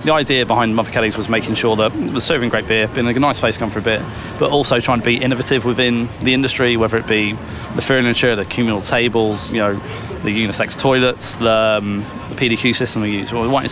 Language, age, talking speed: English, 20-39, 230 wpm